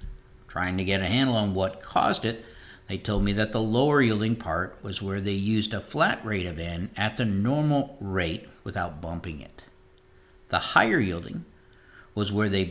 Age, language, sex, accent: 60-79, English, male, American